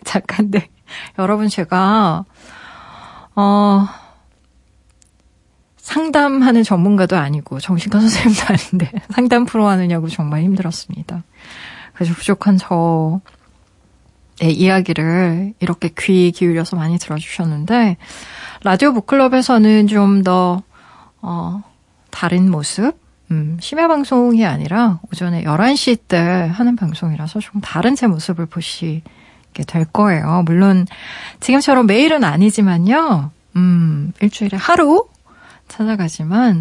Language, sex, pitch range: Korean, female, 175-230 Hz